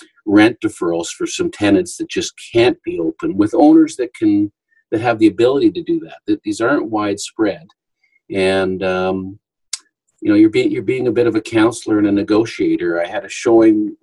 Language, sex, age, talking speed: English, male, 50-69, 195 wpm